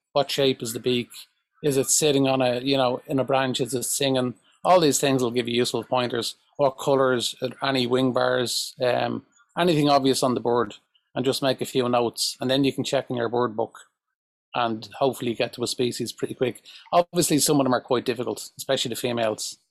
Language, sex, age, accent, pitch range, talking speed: English, male, 30-49, Irish, 115-135 Hz, 215 wpm